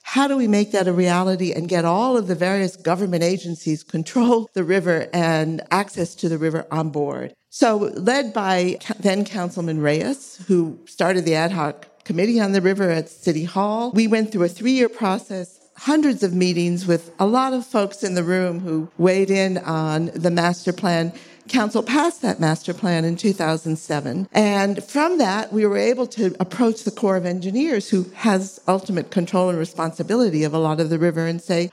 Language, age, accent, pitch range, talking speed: English, 50-69, American, 170-215 Hz, 190 wpm